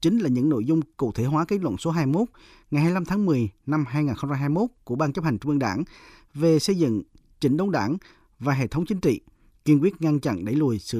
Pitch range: 105-150 Hz